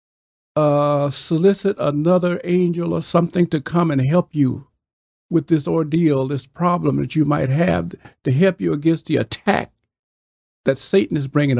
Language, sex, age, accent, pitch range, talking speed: English, male, 50-69, American, 130-180 Hz, 155 wpm